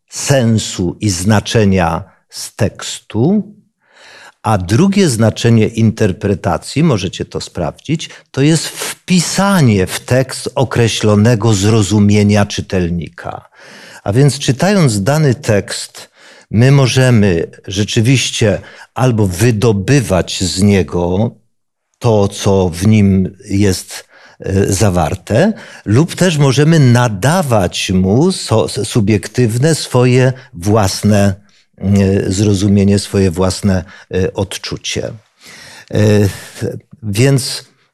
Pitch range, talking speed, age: 100-130 Hz, 80 wpm, 50-69